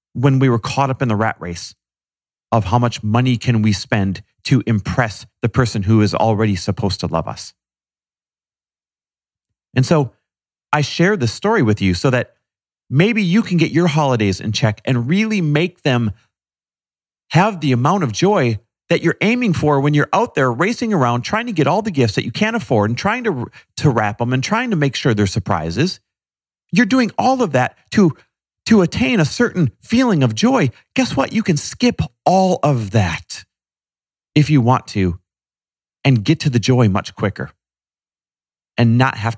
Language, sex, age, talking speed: English, male, 40-59, 185 wpm